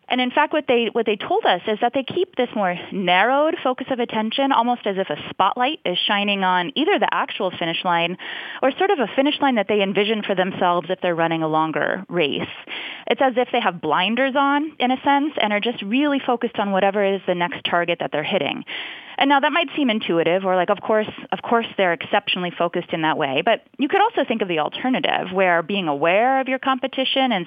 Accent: American